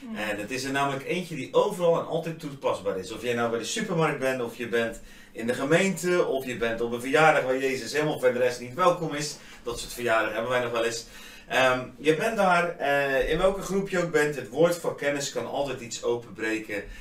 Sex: male